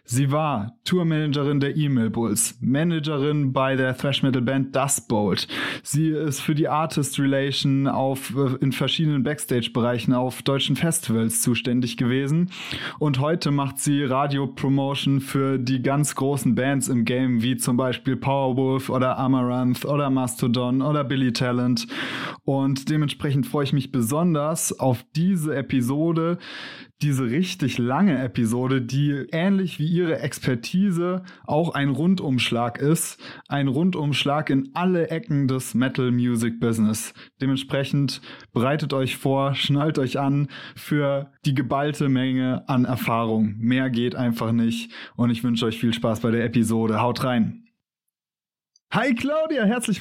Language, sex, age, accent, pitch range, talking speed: German, male, 20-39, German, 125-150 Hz, 130 wpm